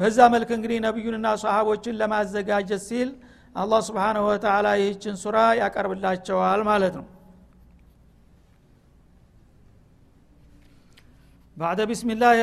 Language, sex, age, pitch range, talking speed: Amharic, male, 60-79, 200-230 Hz, 65 wpm